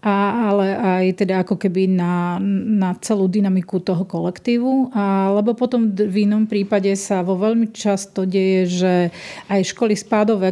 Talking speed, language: 155 wpm, Slovak